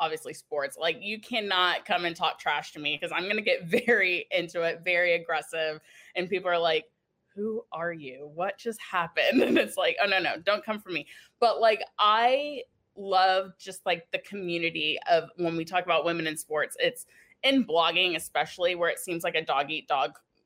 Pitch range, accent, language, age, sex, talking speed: 160-215 Hz, American, English, 20-39, female, 200 wpm